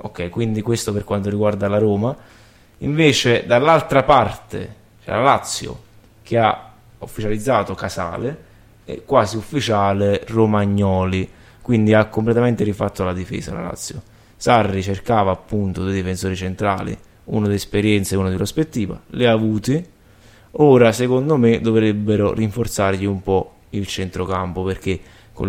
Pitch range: 95-115 Hz